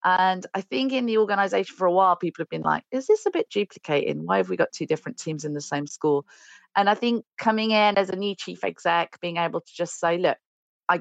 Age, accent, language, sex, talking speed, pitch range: 40-59, British, English, female, 250 wpm, 145-180 Hz